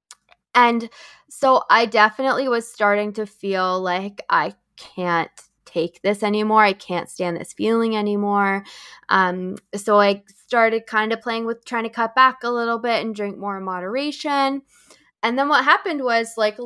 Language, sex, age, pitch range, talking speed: English, female, 20-39, 200-240 Hz, 165 wpm